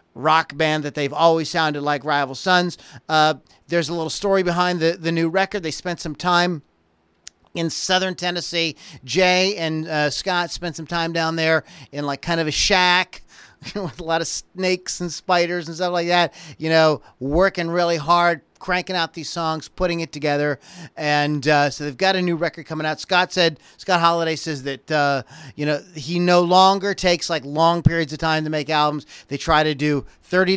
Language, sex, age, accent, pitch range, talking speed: English, male, 40-59, American, 150-185 Hz, 195 wpm